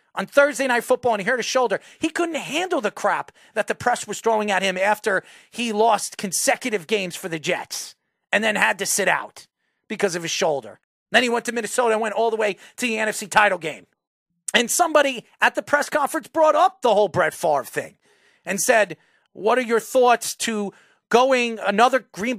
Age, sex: 40-59, male